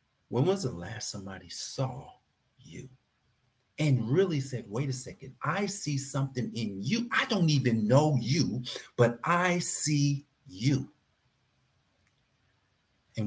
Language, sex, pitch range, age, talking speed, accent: English, male, 120-150 Hz, 50-69, 125 wpm, American